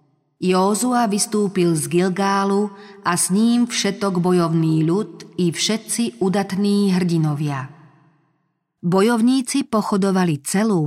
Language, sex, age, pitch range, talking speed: Slovak, female, 40-59, 165-200 Hz, 95 wpm